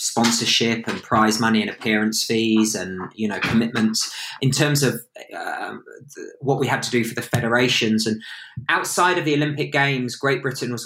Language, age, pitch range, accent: English, 20-39, 115-135 Hz, British